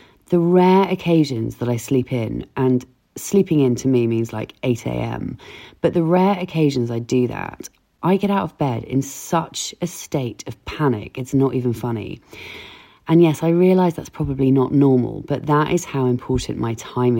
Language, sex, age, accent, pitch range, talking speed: English, female, 30-49, British, 120-165 Hz, 180 wpm